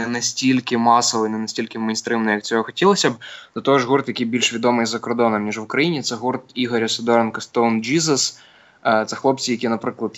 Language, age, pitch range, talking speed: Russian, 20-39, 105-120 Hz, 185 wpm